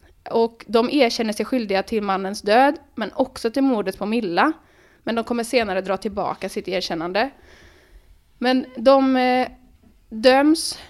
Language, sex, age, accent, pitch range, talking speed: Swedish, female, 20-39, native, 195-250 Hz, 140 wpm